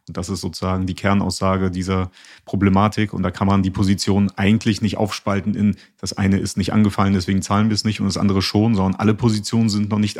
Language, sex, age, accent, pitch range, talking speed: German, male, 30-49, German, 100-115 Hz, 220 wpm